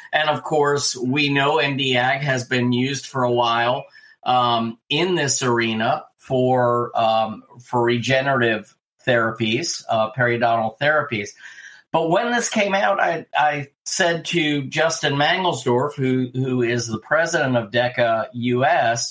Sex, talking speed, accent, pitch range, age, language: male, 135 wpm, American, 125-160 Hz, 50-69, English